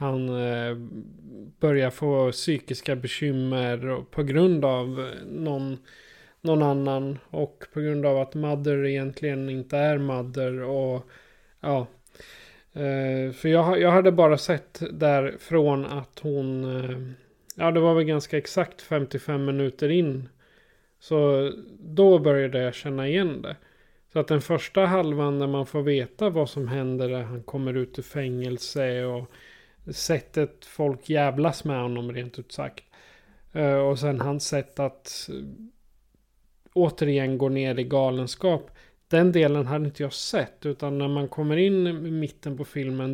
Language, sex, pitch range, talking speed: Swedish, male, 130-155 Hz, 140 wpm